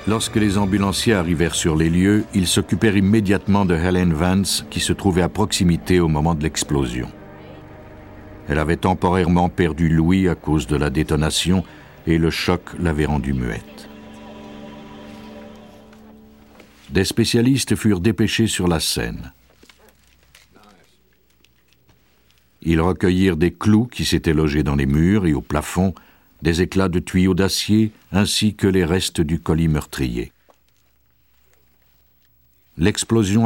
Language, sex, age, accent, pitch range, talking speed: French, male, 60-79, French, 75-100 Hz, 125 wpm